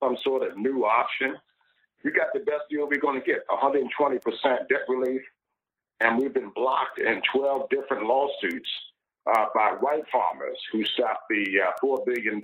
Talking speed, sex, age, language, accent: 165 wpm, male, 60-79, English, American